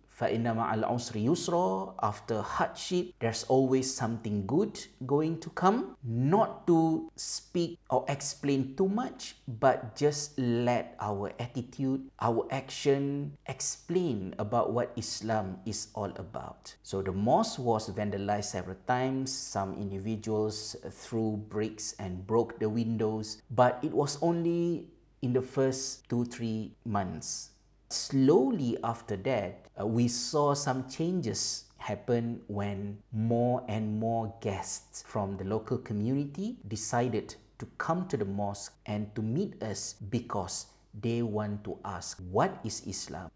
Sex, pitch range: male, 105-135 Hz